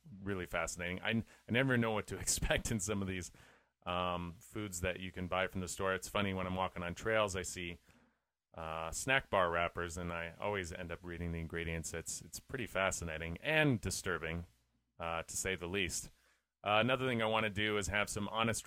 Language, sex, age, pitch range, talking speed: English, male, 30-49, 90-110 Hz, 210 wpm